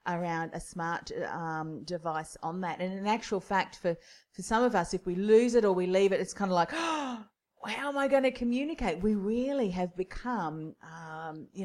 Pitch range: 170-220 Hz